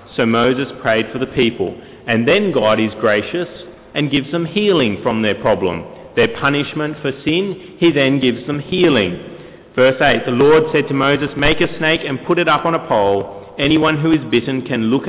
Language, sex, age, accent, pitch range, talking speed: English, male, 30-49, Australian, 115-145 Hz, 200 wpm